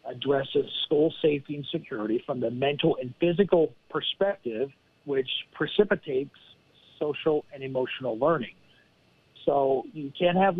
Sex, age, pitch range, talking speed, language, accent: male, 50-69, 140-180 Hz, 120 wpm, English, American